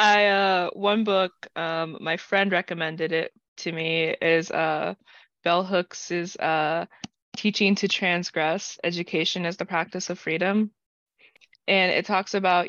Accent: American